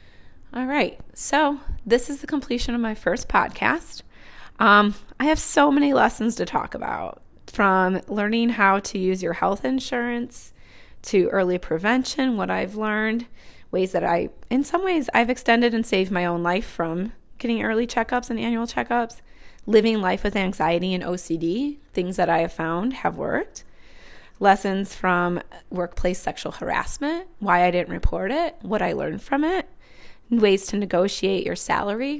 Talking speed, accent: 160 wpm, American